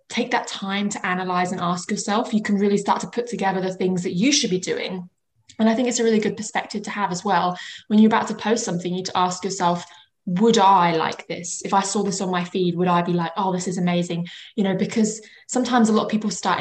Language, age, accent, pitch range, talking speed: English, 20-39, British, 180-220 Hz, 265 wpm